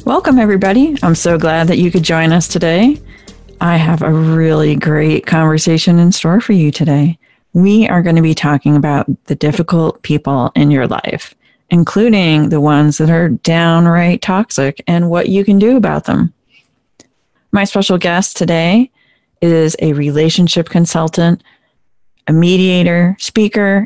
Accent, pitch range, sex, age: American, 155-185 Hz, female, 40-59